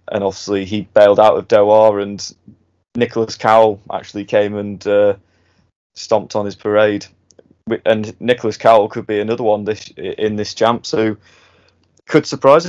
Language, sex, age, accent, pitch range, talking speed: English, male, 20-39, British, 100-120 Hz, 150 wpm